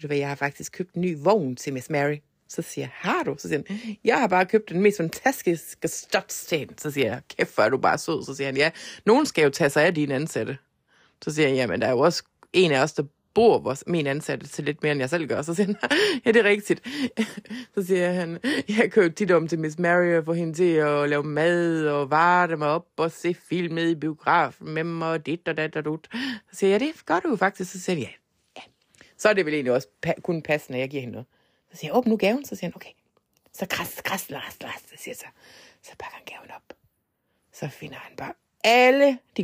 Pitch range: 150-225 Hz